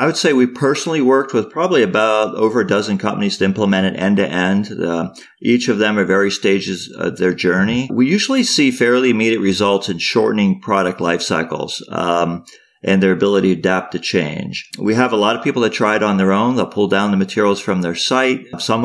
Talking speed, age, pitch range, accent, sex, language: 215 wpm, 40-59, 95-120 Hz, American, male, English